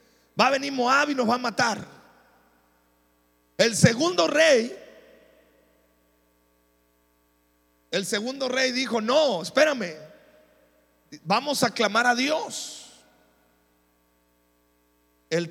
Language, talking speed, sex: Spanish, 95 wpm, male